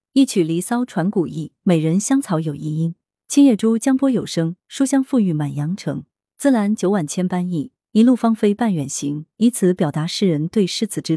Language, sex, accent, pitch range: Chinese, female, native, 155-220 Hz